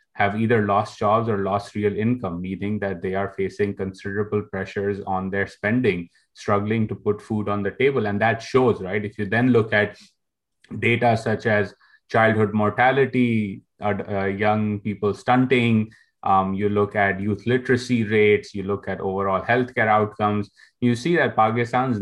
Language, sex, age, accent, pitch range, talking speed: English, male, 20-39, Indian, 100-110 Hz, 165 wpm